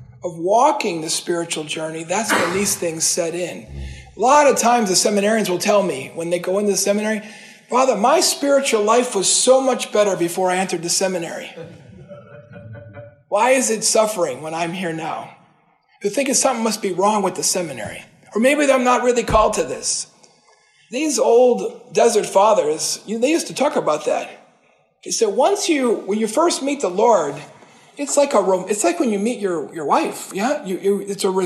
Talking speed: 195 wpm